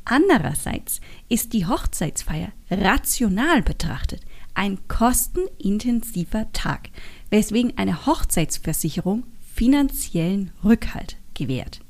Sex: female